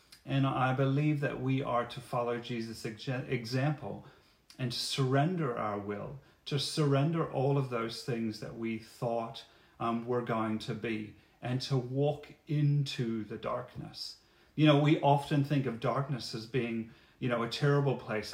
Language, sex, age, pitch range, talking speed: English, male, 40-59, 115-140 Hz, 155 wpm